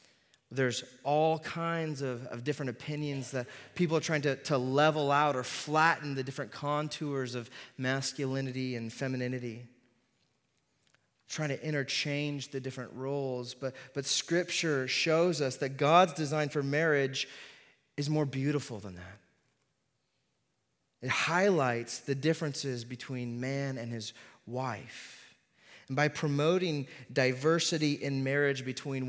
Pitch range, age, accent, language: 125-145 Hz, 30-49, American, English